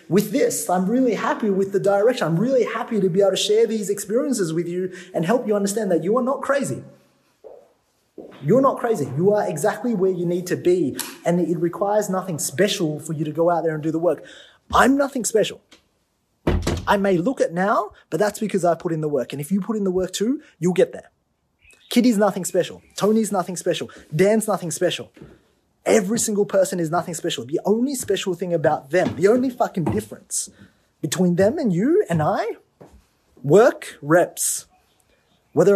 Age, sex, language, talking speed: 30-49, male, English, 195 wpm